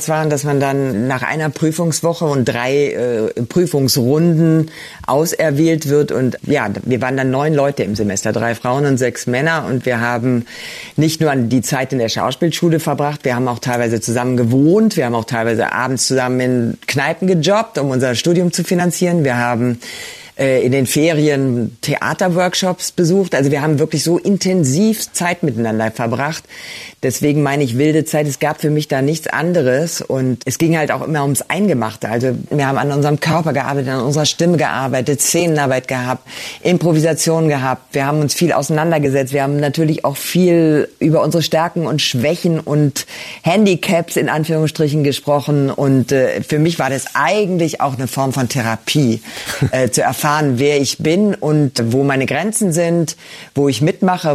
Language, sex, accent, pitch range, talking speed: German, female, German, 130-160 Hz, 170 wpm